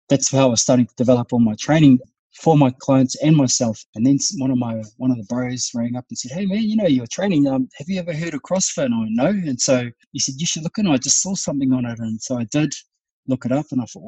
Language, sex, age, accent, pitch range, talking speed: English, male, 20-39, Australian, 115-135 Hz, 290 wpm